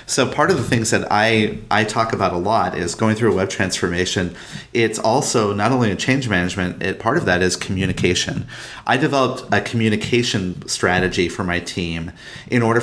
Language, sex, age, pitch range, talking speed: English, male, 30-49, 100-130 Hz, 185 wpm